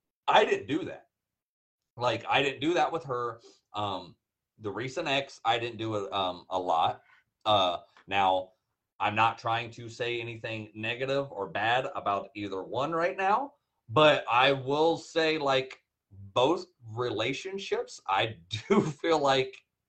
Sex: male